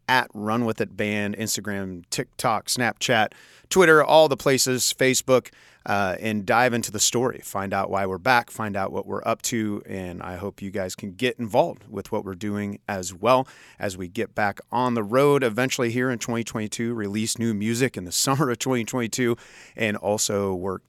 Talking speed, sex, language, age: 190 wpm, male, English, 30-49